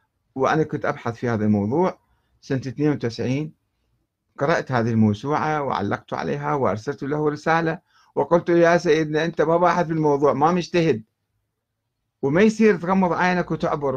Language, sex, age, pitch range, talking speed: Arabic, male, 60-79, 115-180 Hz, 140 wpm